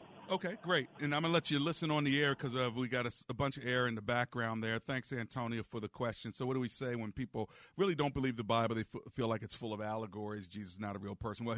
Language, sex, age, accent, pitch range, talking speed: English, male, 40-59, American, 100-120 Hz, 295 wpm